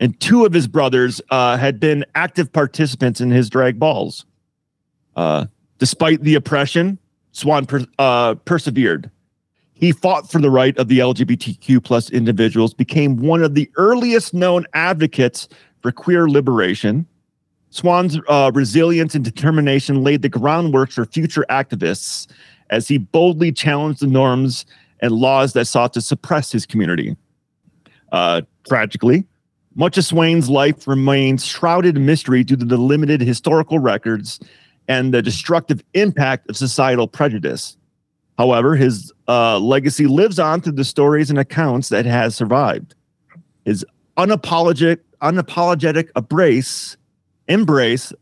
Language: English